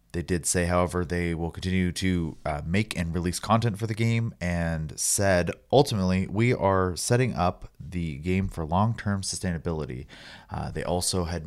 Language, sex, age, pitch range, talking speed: English, male, 30-49, 80-105 Hz, 175 wpm